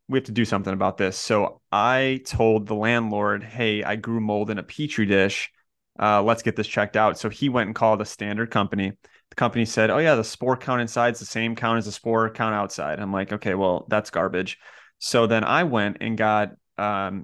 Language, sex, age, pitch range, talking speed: English, male, 30-49, 105-120 Hz, 225 wpm